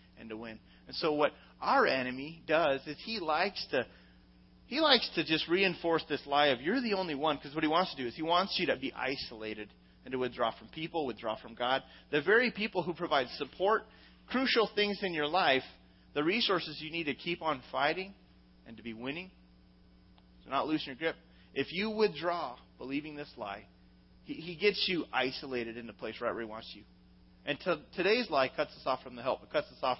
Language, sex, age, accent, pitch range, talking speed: English, male, 30-49, American, 105-165 Hz, 215 wpm